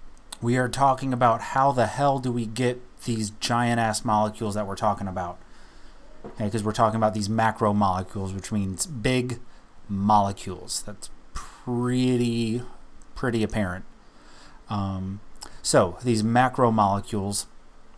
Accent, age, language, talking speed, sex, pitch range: American, 30-49, English, 115 wpm, male, 105-125 Hz